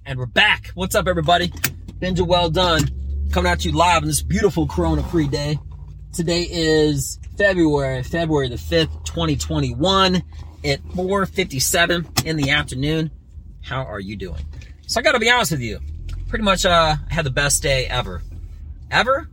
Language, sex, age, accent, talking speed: English, male, 30-49, American, 160 wpm